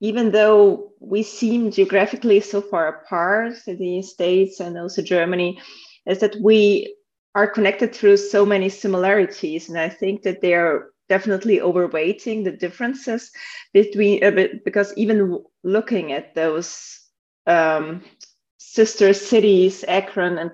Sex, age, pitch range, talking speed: female, 30-49, 170-210 Hz, 130 wpm